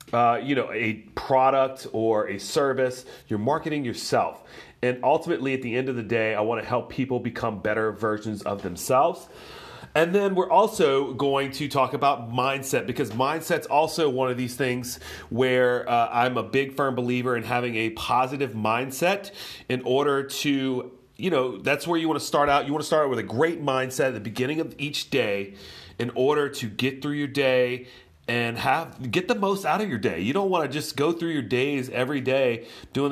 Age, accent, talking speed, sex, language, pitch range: 30-49, American, 200 wpm, male, English, 120-150 Hz